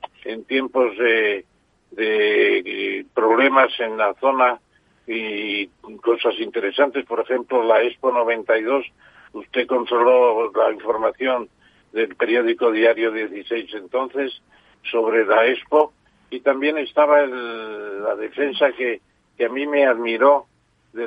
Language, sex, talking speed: Spanish, male, 115 wpm